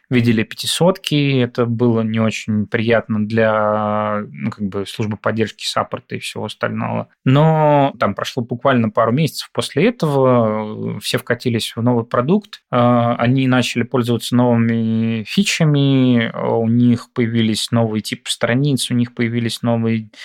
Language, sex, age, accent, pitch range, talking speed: Russian, male, 20-39, native, 115-125 Hz, 125 wpm